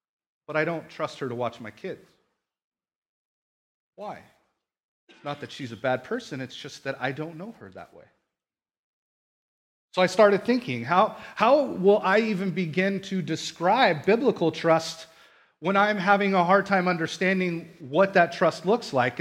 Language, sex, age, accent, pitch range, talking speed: English, male, 40-59, American, 125-180 Hz, 160 wpm